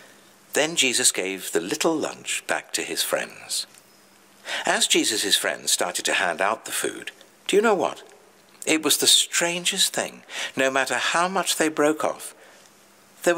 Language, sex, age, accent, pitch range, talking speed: English, male, 60-79, British, 145-210 Hz, 165 wpm